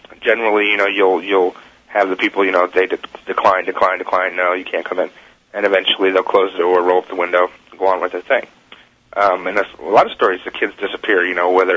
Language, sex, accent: English, male, American